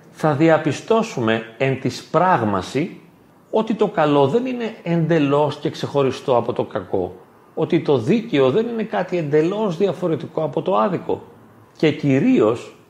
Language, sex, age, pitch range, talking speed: Greek, male, 40-59, 135-210 Hz, 135 wpm